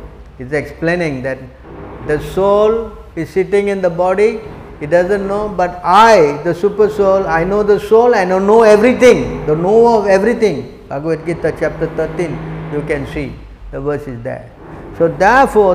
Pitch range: 150-205 Hz